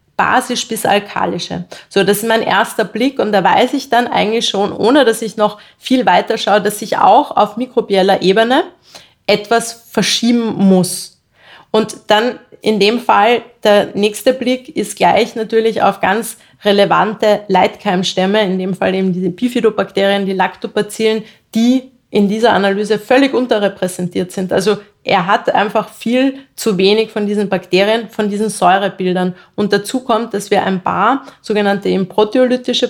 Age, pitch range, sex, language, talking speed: 30-49, 190-225 Hz, female, German, 155 wpm